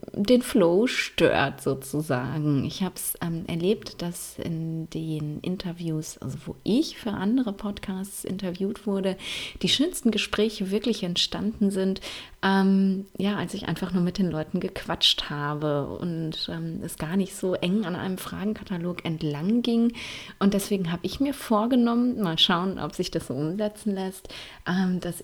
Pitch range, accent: 170-210 Hz, German